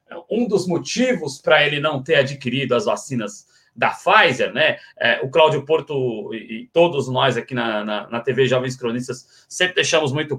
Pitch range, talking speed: 125-175 Hz, 160 wpm